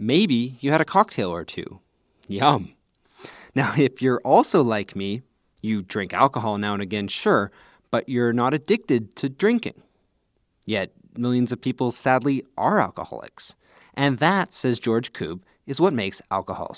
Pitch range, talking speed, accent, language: 105-140 Hz, 155 wpm, American, English